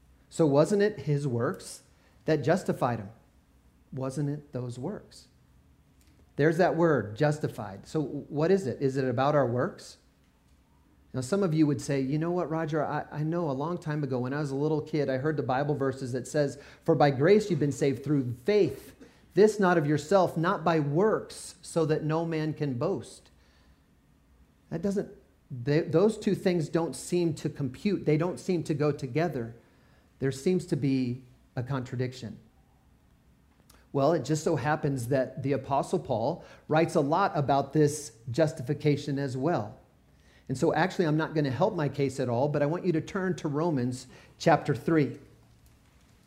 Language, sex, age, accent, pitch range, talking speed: English, male, 40-59, American, 130-165 Hz, 175 wpm